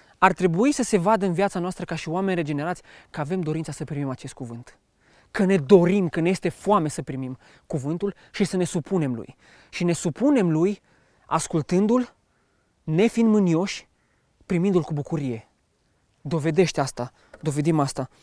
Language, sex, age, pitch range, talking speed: English, male, 20-39, 150-200 Hz, 160 wpm